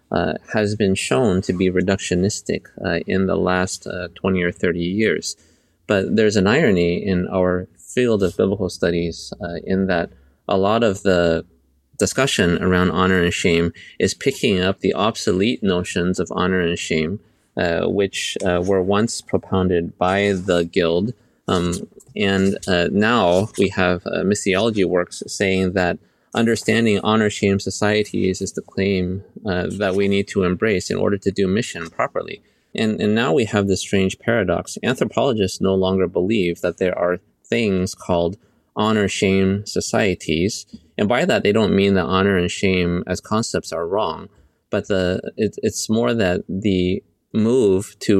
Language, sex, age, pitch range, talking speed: English, male, 30-49, 90-100 Hz, 160 wpm